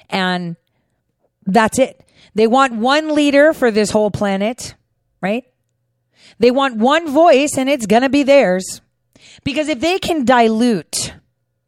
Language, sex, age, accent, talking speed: English, female, 40-59, American, 140 wpm